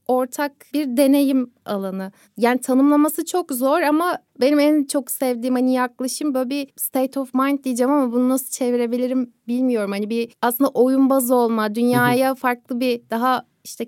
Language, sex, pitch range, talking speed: Turkish, female, 220-265 Hz, 155 wpm